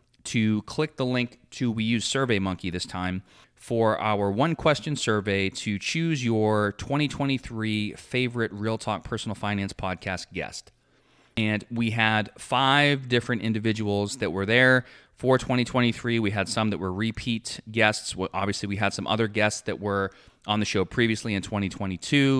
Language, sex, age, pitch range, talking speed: English, male, 30-49, 95-120 Hz, 160 wpm